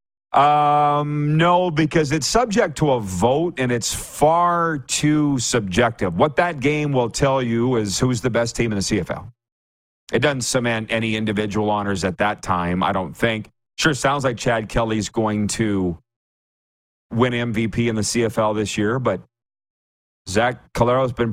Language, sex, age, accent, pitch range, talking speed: English, male, 40-59, American, 110-140 Hz, 160 wpm